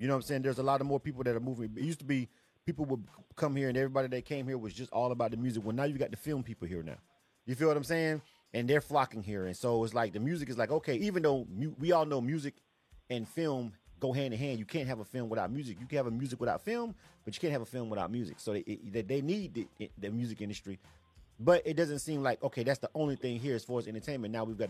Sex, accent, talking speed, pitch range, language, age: male, American, 285 wpm, 110-140 Hz, English, 30-49